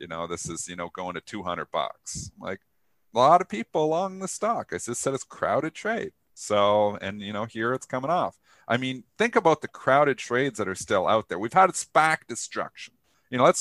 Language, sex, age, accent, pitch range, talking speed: English, male, 40-59, American, 100-140 Hz, 225 wpm